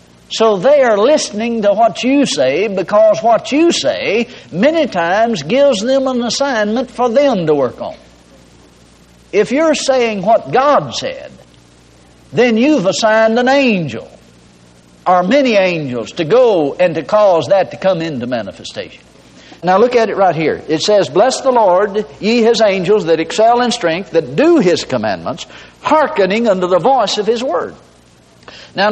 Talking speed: 160 wpm